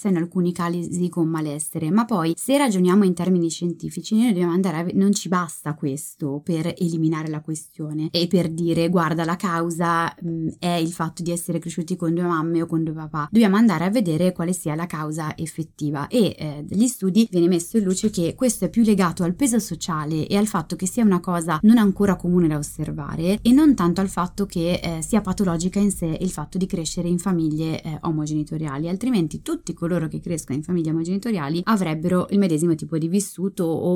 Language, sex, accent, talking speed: Italian, female, native, 205 wpm